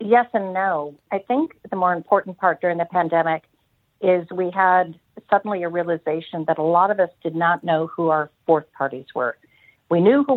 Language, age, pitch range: English, 50-69, 155-190 Hz